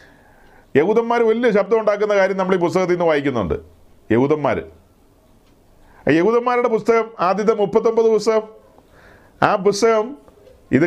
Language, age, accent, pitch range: Malayalam, 40-59, native, 195-230 Hz